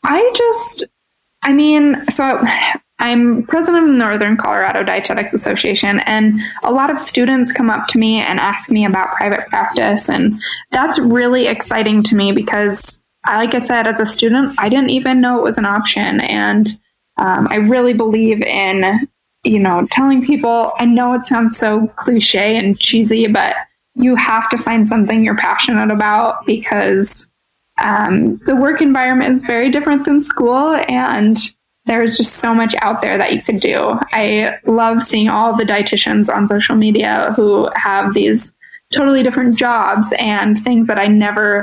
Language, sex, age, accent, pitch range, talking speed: English, female, 10-29, American, 215-255 Hz, 170 wpm